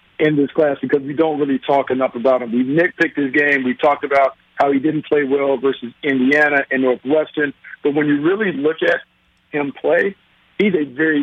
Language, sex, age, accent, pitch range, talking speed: English, male, 50-69, American, 140-160 Hz, 205 wpm